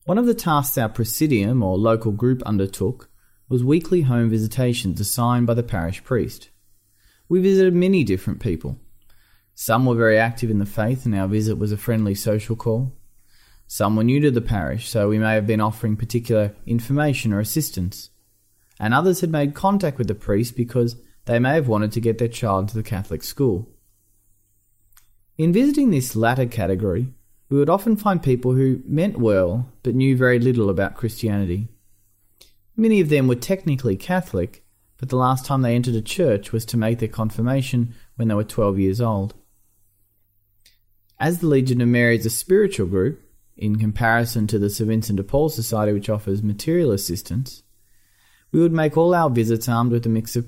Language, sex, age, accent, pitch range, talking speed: English, male, 30-49, Australian, 100-125 Hz, 180 wpm